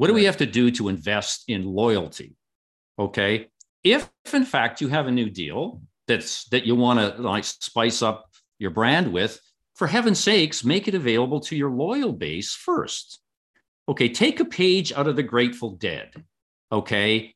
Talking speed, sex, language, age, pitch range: 180 wpm, male, English, 50-69, 105-160 Hz